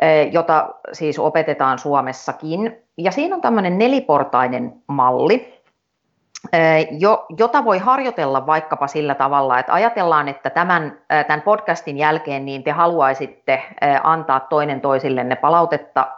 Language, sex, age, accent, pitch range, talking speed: Finnish, female, 30-49, native, 135-195 Hz, 110 wpm